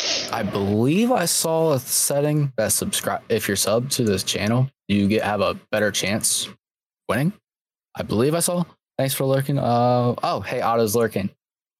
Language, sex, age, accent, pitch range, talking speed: English, male, 20-39, American, 105-130 Hz, 170 wpm